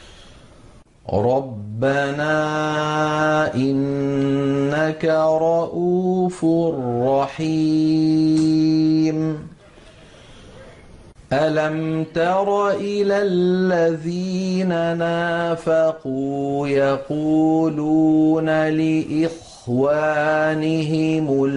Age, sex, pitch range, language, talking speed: 40-59, male, 140-175 Hz, Arabic, 35 wpm